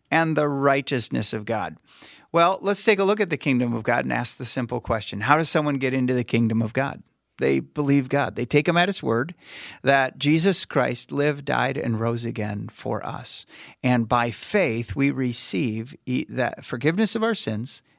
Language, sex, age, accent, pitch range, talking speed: English, male, 40-59, American, 115-150 Hz, 195 wpm